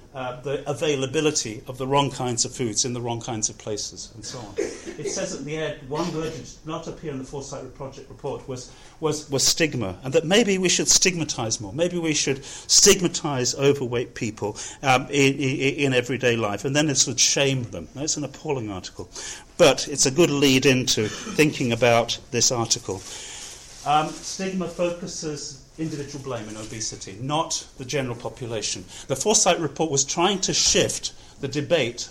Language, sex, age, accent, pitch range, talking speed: English, male, 40-59, British, 120-155 Hz, 180 wpm